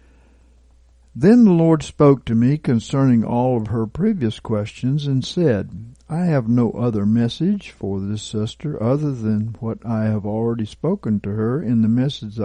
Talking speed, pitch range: 165 wpm, 105-135 Hz